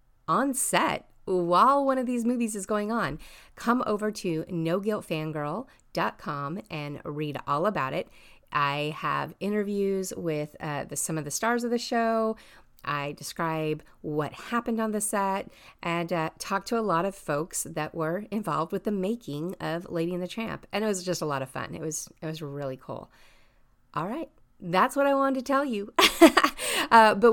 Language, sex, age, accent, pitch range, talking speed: English, female, 30-49, American, 150-225 Hz, 180 wpm